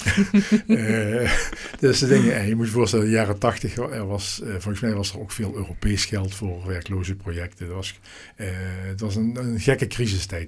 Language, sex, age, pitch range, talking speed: Dutch, male, 50-69, 95-115 Hz, 195 wpm